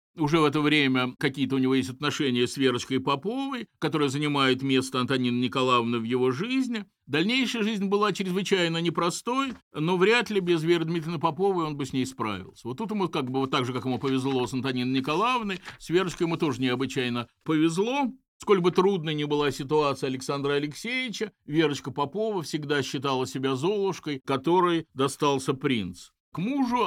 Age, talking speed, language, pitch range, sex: 50-69, 170 wpm, Russian, 130-175 Hz, male